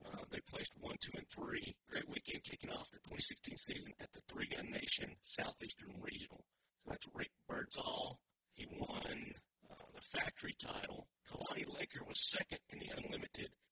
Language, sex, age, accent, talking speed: English, male, 40-59, American, 160 wpm